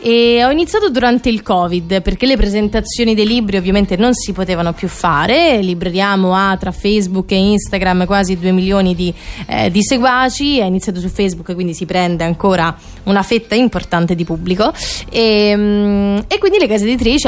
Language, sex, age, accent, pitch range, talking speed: Italian, female, 20-39, native, 190-240 Hz, 170 wpm